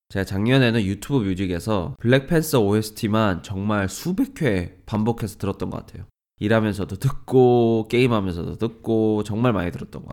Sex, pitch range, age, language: male, 95-125 Hz, 20-39, Korean